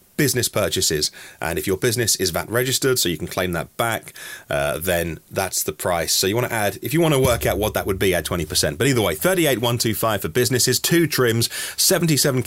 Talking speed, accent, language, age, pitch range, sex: 220 wpm, British, English, 30-49, 105-125 Hz, male